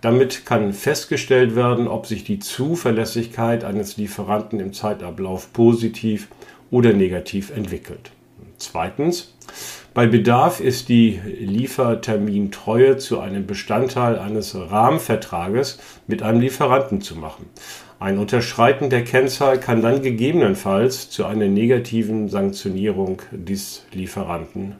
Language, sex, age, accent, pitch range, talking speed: German, male, 50-69, German, 105-130 Hz, 110 wpm